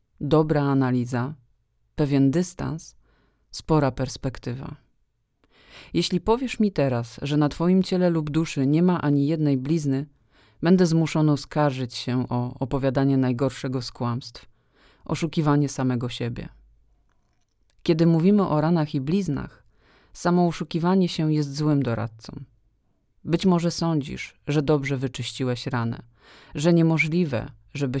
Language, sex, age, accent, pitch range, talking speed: Polish, female, 40-59, native, 130-165 Hz, 115 wpm